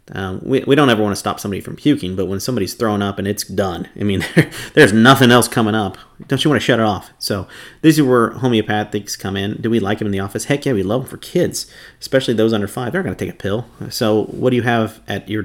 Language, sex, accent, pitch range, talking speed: English, male, American, 100-120 Hz, 275 wpm